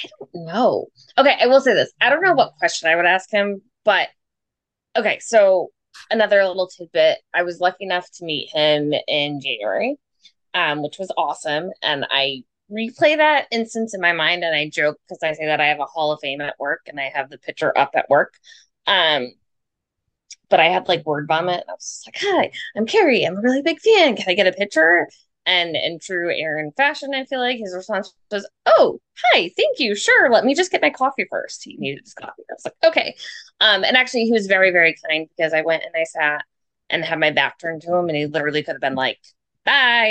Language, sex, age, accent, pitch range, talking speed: English, female, 20-39, American, 160-245 Hz, 225 wpm